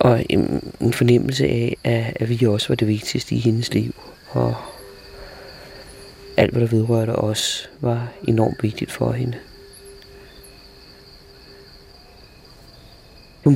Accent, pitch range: native, 105-120 Hz